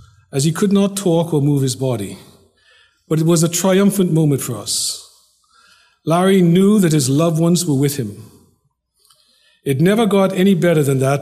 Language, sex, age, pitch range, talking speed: English, male, 50-69, 125-170 Hz, 175 wpm